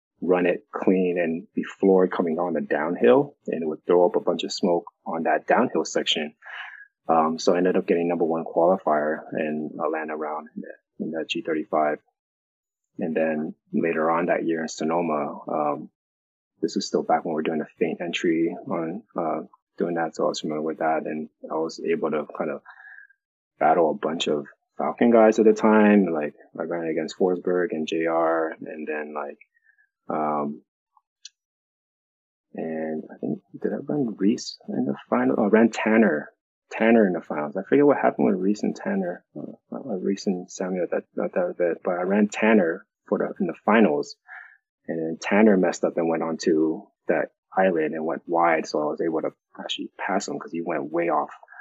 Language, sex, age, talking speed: English, male, 20-39, 195 wpm